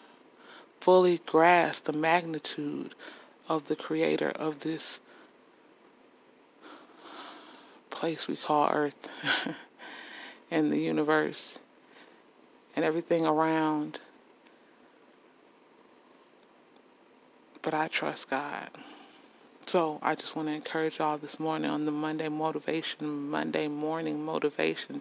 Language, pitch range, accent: English, 150-165 Hz, American